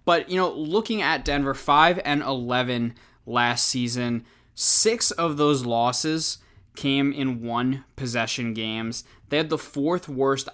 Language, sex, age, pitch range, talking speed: English, male, 20-39, 120-150 Hz, 140 wpm